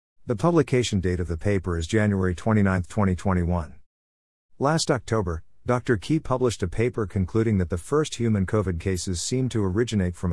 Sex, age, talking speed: male, 50-69, 165 wpm